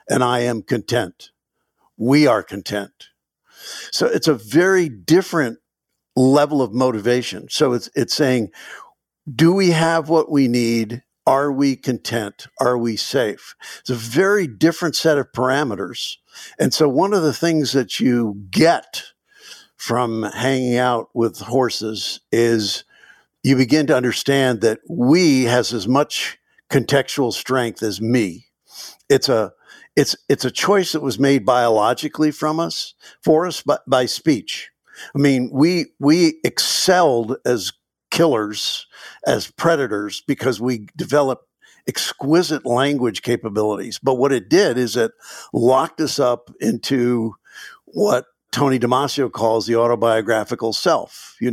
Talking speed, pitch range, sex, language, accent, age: 135 wpm, 115-145 Hz, male, English, American, 60-79